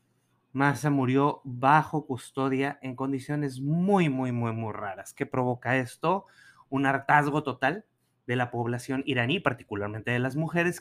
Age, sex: 30-49, male